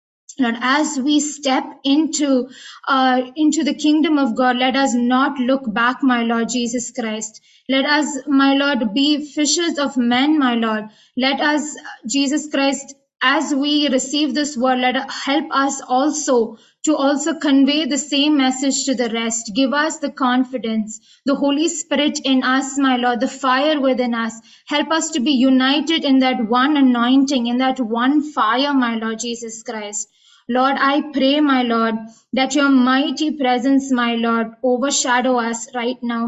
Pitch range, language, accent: 245-280 Hz, Malayalam, native